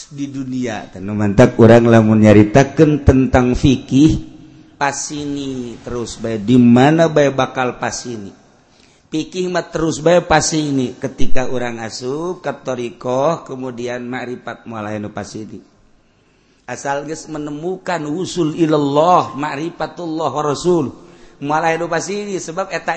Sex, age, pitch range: male, 50-69, 125-170 Hz